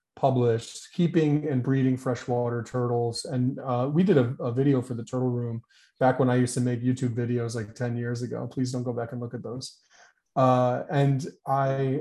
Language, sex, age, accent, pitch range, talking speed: English, male, 30-49, American, 125-145 Hz, 200 wpm